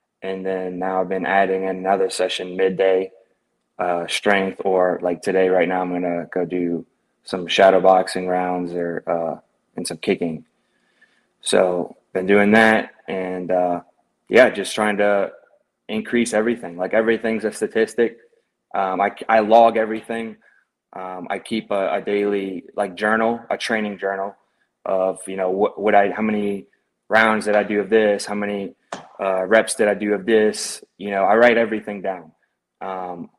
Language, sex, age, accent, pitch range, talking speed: English, male, 20-39, American, 95-110 Hz, 165 wpm